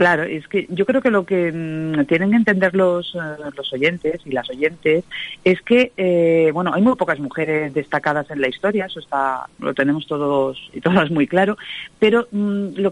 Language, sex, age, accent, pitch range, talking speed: Spanish, female, 40-59, Spanish, 155-200 Hz, 190 wpm